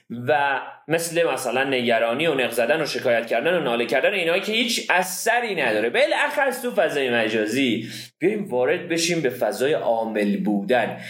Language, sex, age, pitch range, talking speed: Persian, male, 30-49, 125-205 Hz, 150 wpm